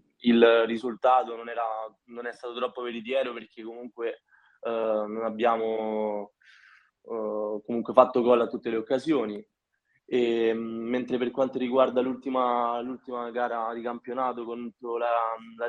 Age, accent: 20-39, native